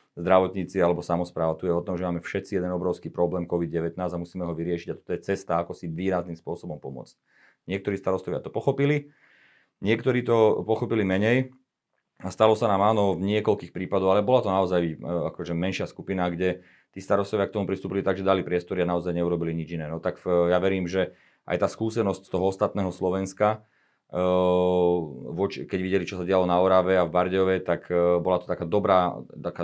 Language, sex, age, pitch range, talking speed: Slovak, male, 30-49, 90-100 Hz, 190 wpm